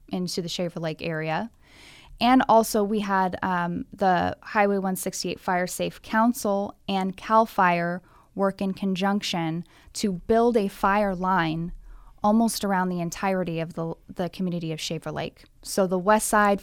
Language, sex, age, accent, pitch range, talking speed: English, female, 10-29, American, 170-195 Hz, 150 wpm